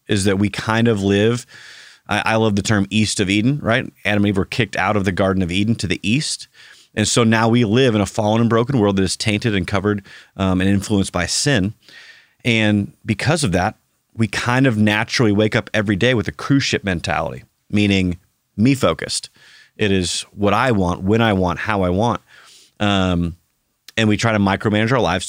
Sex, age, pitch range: male, 30-49, 95-115 Hz